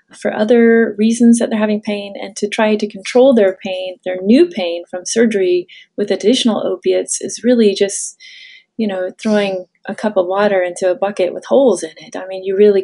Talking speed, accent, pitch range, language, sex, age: 200 wpm, American, 185-235 Hz, English, female, 30-49